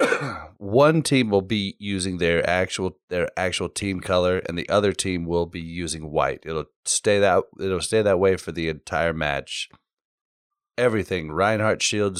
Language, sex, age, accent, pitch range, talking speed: English, male, 30-49, American, 85-105 Hz, 160 wpm